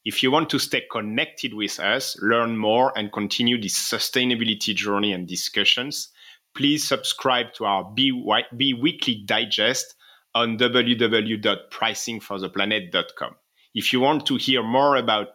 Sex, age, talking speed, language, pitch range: male, 30-49, 135 wpm, English, 105-130 Hz